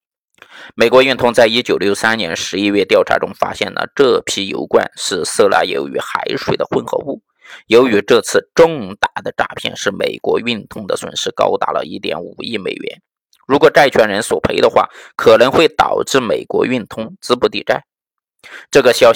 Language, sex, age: Chinese, male, 20-39